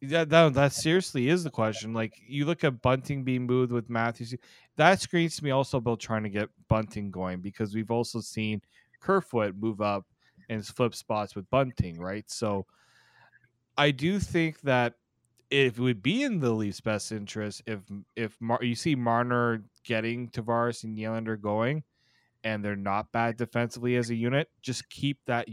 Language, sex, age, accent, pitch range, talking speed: English, male, 20-39, American, 110-130 Hz, 180 wpm